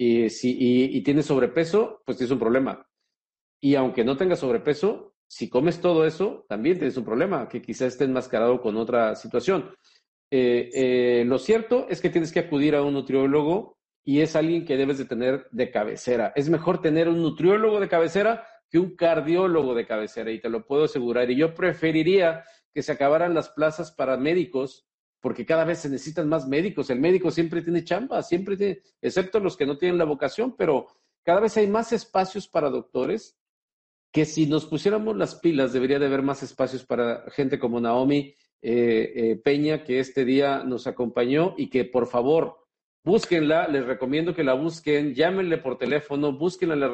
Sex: male